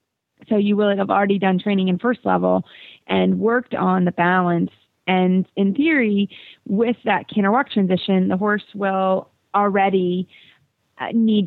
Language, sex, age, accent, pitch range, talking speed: English, female, 30-49, American, 185-215 Hz, 145 wpm